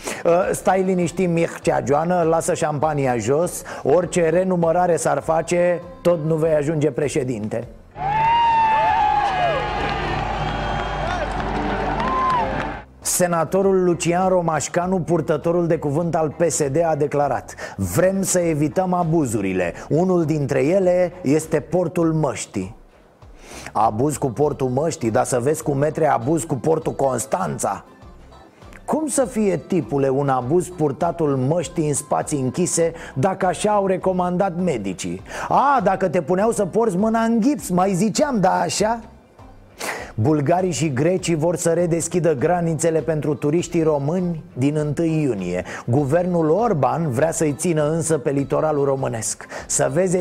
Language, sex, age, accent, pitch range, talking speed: Romanian, male, 30-49, native, 145-180 Hz, 120 wpm